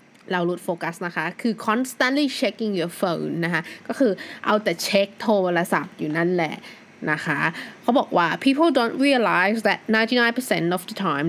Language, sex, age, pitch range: Thai, female, 20-39, 175-235 Hz